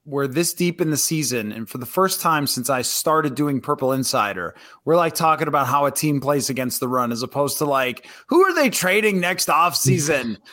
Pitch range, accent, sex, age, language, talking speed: 145-190 Hz, American, male, 20-39, English, 220 wpm